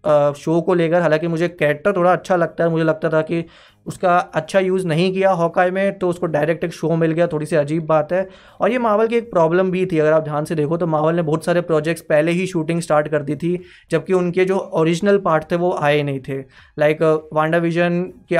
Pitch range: 155-180 Hz